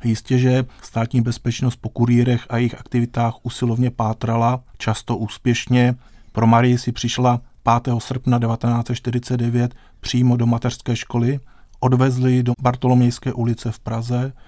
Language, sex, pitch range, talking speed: Czech, male, 115-125 Hz, 130 wpm